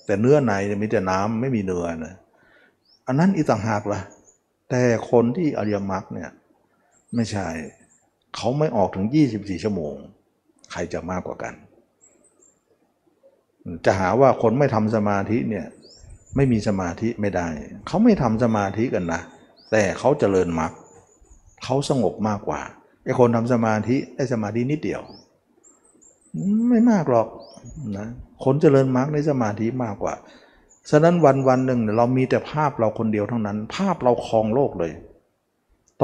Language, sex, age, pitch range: Thai, male, 60-79, 100-130 Hz